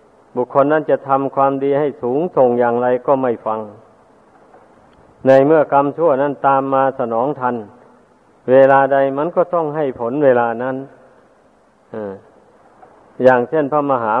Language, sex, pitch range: Thai, male, 125-145 Hz